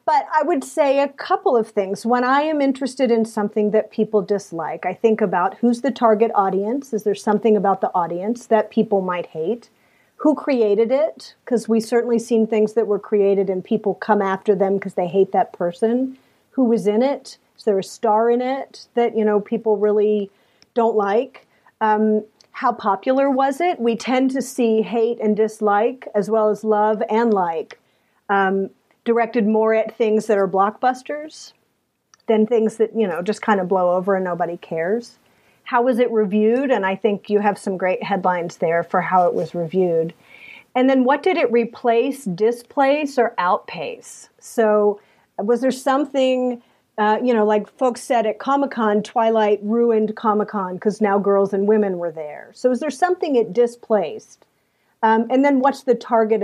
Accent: American